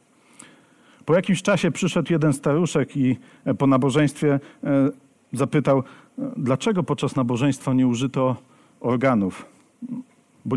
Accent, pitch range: native, 125-150 Hz